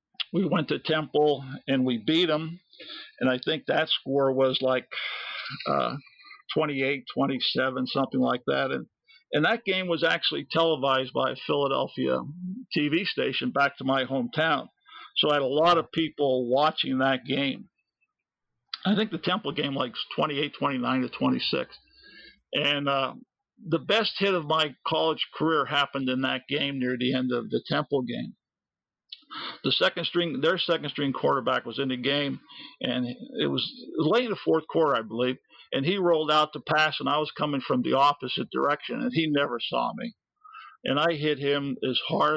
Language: English